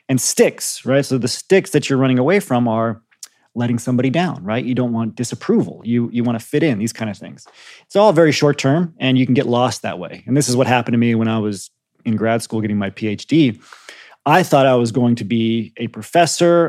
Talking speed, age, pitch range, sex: 235 wpm, 30-49, 115-135 Hz, male